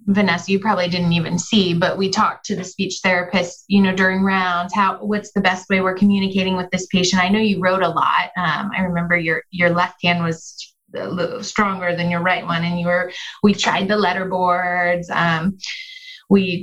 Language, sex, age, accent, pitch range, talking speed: English, female, 20-39, American, 175-200 Hz, 210 wpm